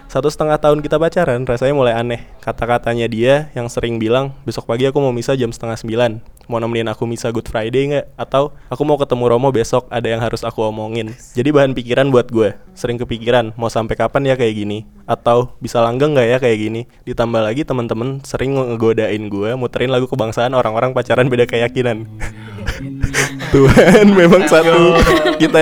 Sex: male